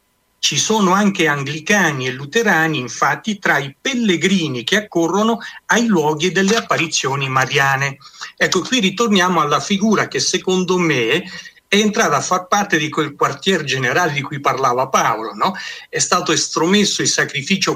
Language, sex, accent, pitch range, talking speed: Italian, male, native, 145-195 Hz, 150 wpm